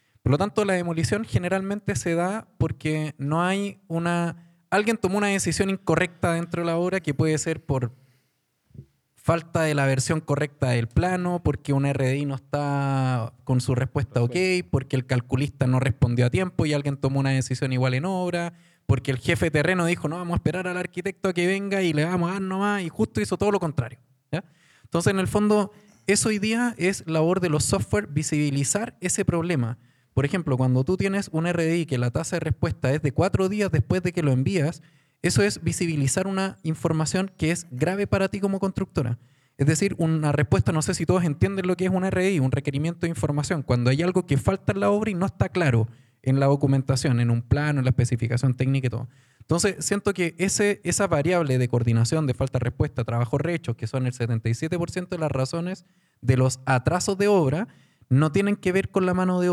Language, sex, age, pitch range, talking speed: Spanish, male, 20-39, 130-185 Hz, 210 wpm